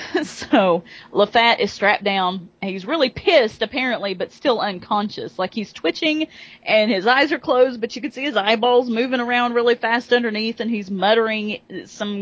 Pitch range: 195-270 Hz